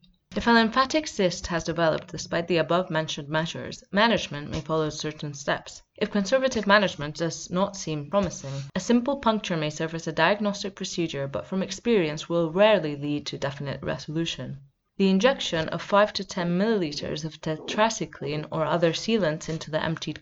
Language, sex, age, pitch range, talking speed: English, female, 20-39, 155-195 Hz, 165 wpm